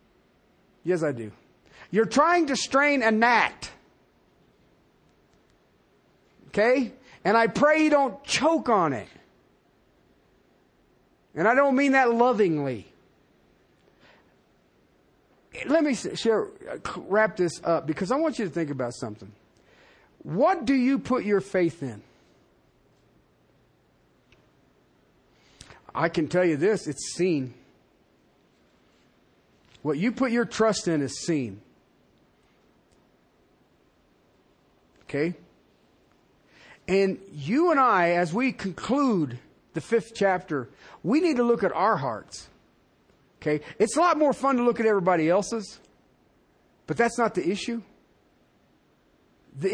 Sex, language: male, English